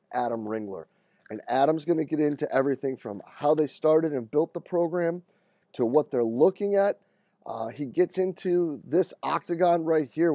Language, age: English, 30-49